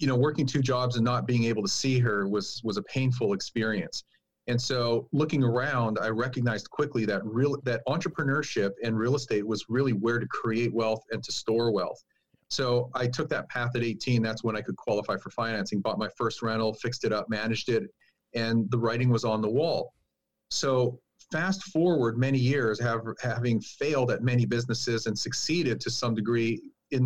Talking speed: 195 wpm